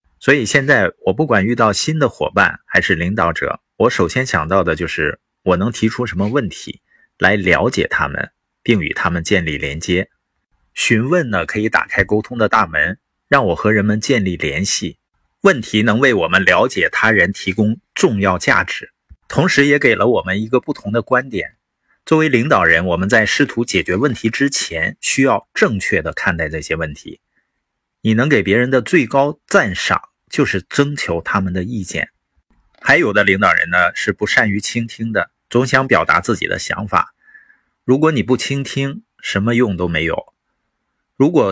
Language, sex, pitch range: Chinese, male, 95-140 Hz